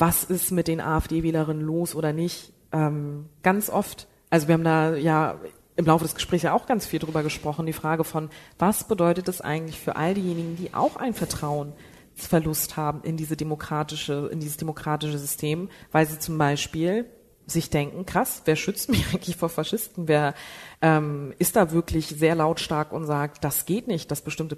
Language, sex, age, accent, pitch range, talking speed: German, female, 30-49, German, 150-175 Hz, 185 wpm